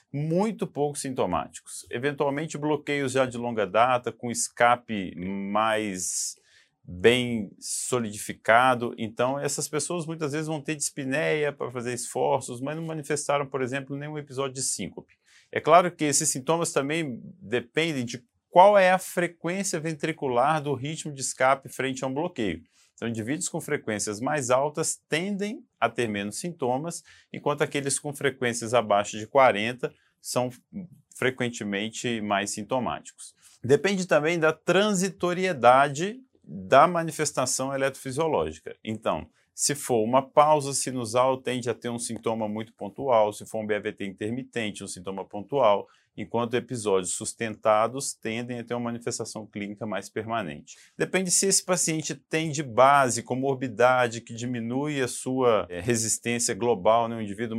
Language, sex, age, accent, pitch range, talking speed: Portuguese, male, 40-59, Brazilian, 115-155 Hz, 140 wpm